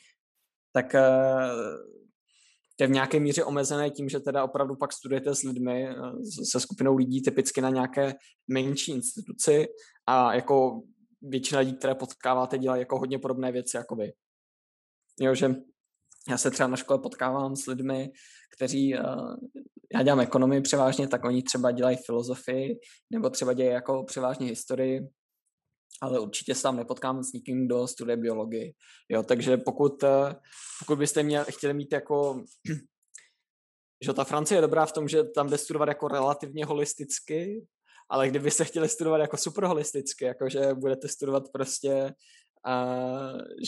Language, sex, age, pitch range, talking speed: Czech, male, 20-39, 125-145 Hz, 145 wpm